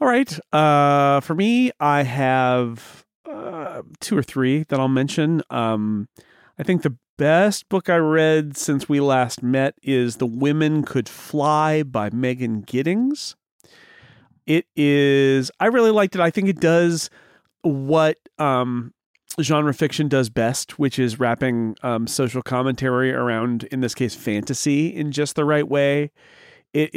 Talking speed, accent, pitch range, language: 150 wpm, American, 125-155 Hz, English